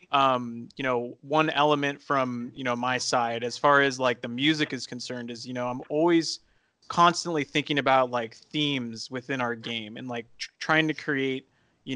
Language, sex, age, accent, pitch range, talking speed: English, male, 20-39, American, 120-145 Hz, 185 wpm